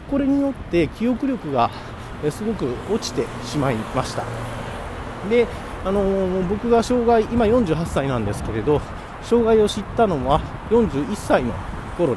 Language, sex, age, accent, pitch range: Japanese, male, 40-59, native, 125-210 Hz